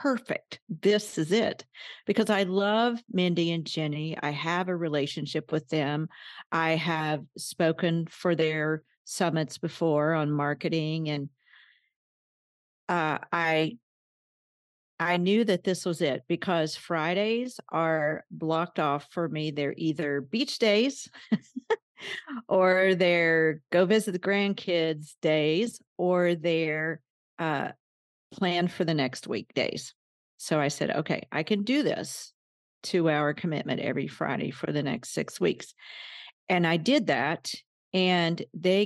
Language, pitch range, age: English, 160-200 Hz, 50-69